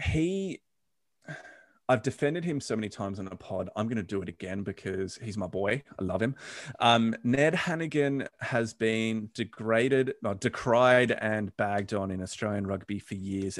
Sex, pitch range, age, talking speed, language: male, 100-130 Hz, 30-49, 170 wpm, English